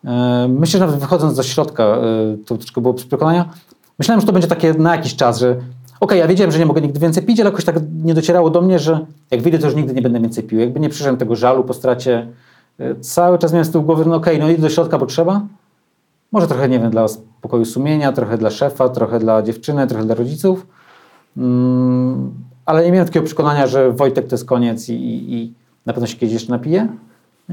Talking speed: 220 wpm